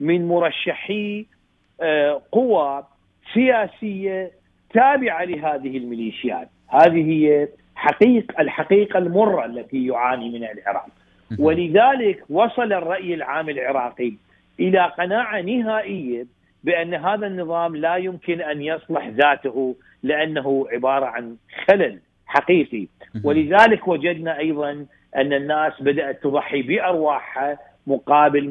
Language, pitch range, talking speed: Arabic, 135-175 Hz, 95 wpm